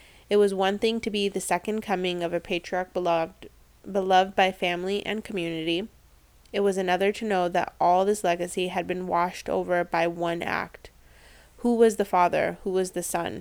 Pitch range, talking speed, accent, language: 175-200 Hz, 190 wpm, American, English